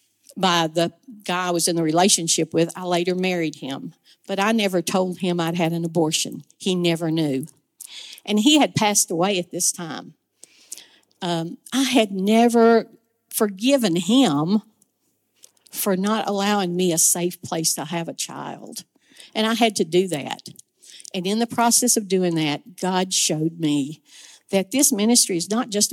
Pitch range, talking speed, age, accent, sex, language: 175-230 Hz, 165 wpm, 50-69, American, female, English